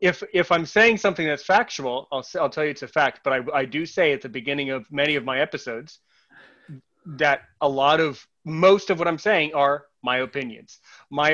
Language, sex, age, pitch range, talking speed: English, male, 30-49, 140-185 Hz, 215 wpm